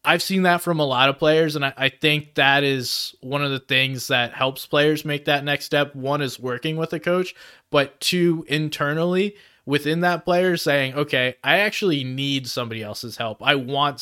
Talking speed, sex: 195 wpm, male